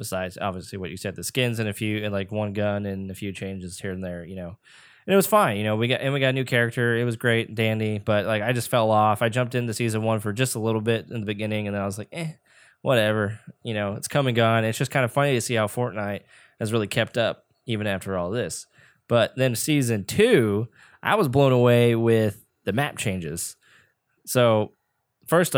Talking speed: 245 wpm